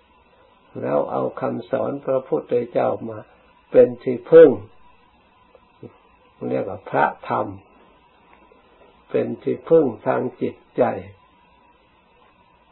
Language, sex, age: Thai, male, 60-79